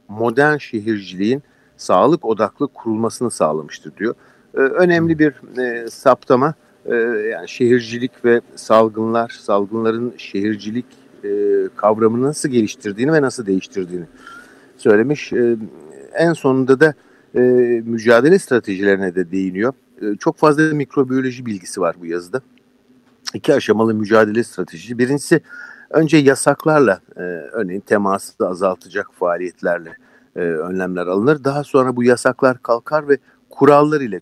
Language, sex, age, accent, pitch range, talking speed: Turkish, male, 50-69, native, 100-130 Hz, 100 wpm